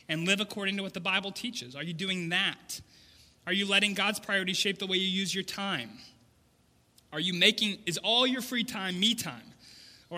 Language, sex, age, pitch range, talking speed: English, male, 20-39, 150-200 Hz, 205 wpm